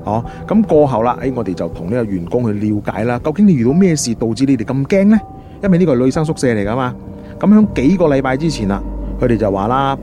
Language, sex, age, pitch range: Chinese, male, 30-49, 100-140 Hz